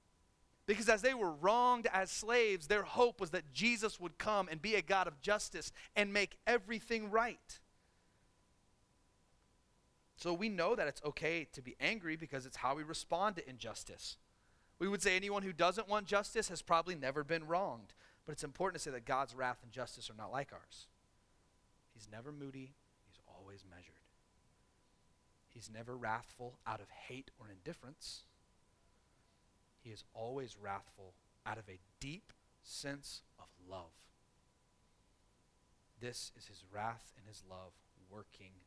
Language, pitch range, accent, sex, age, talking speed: English, 100-165 Hz, American, male, 30-49, 155 wpm